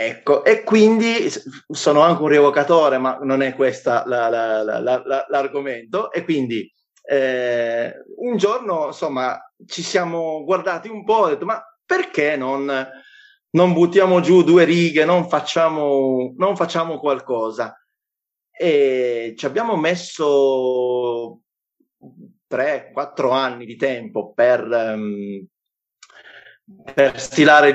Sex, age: male, 30-49